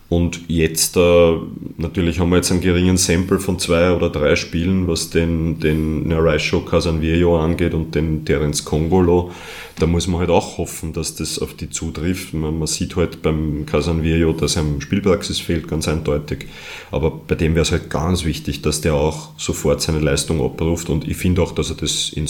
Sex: male